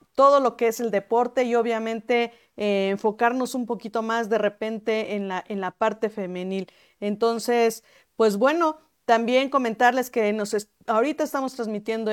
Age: 40-59